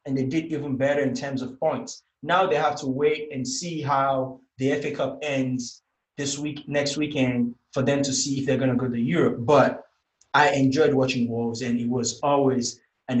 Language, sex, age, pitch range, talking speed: English, male, 20-39, 130-175 Hz, 210 wpm